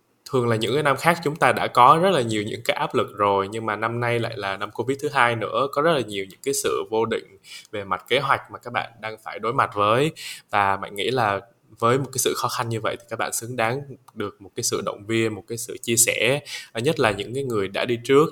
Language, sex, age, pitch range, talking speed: Vietnamese, male, 20-39, 110-125 Hz, 285 wpm